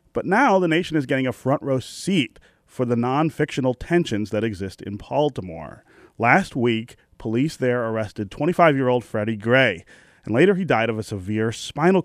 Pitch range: 110-145 Hz